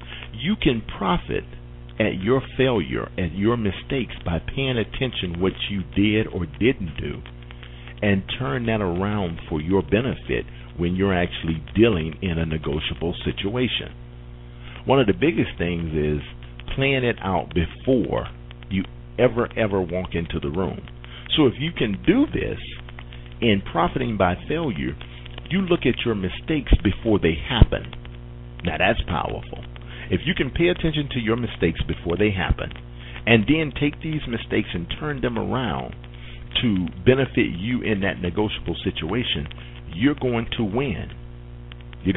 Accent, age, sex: American, 50-69, male